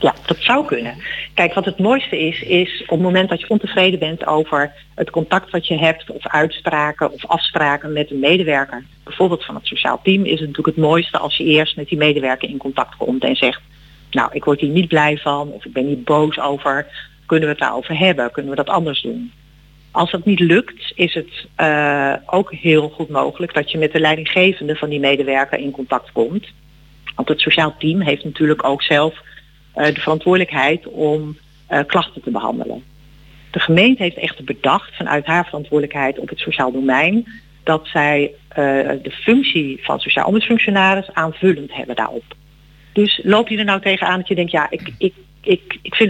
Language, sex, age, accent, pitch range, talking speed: Dutch, female, 40-59, Dutch, 150-180 Hz, 195 wpm